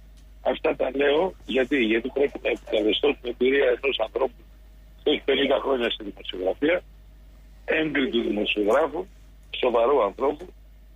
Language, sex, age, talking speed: Greek, male, 60-79, 125 wpm